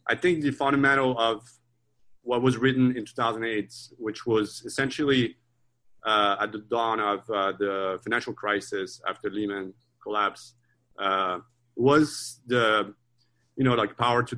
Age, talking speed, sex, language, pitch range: 30-49, 140 wpm, male, English, 110-135 Hz